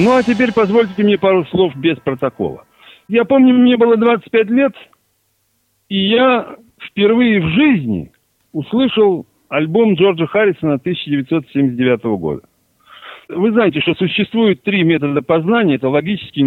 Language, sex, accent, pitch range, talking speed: Russian, male, native, 140-225 Hz, 130 wpm